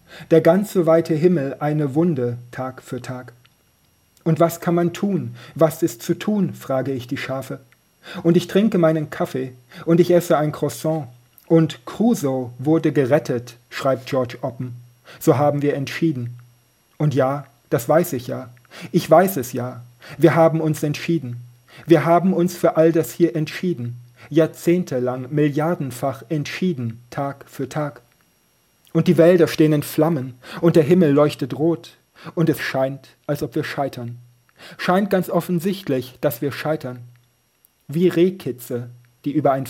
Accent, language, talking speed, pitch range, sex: German, German, 155 wpm, 125-165 Hz, male